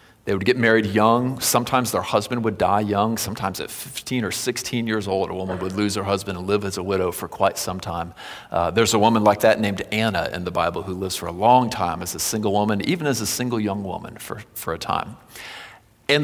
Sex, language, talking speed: male, English, 240 wpm